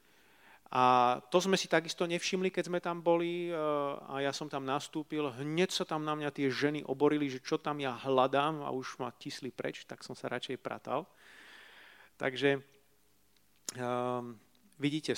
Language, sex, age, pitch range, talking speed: Slovak, male, 40-59, 125-150 Hz, 160 wpm